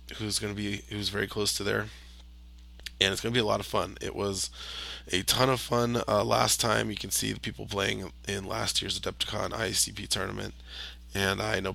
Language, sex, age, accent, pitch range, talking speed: English, male, 20-39, American, 70-110 Hz, 215 wpm